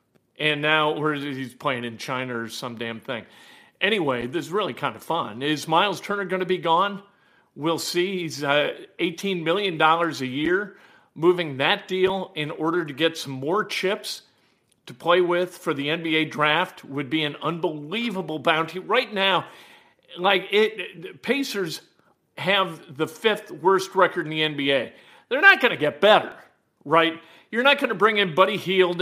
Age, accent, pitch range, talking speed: 50-69, American, 150-190 Hz, 170 wpm